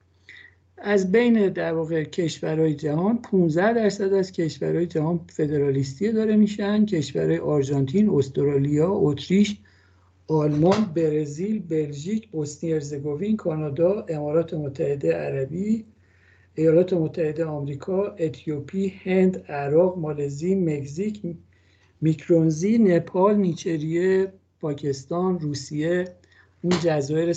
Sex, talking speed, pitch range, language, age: male, 90 wpm, 150-195 Hz, Persian, 60-79